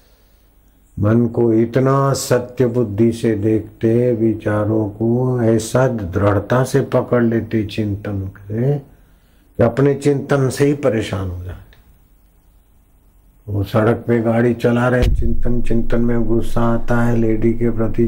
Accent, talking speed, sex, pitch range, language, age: native, 125 wpm, male, 95-115 Hz, Hindi, 60-79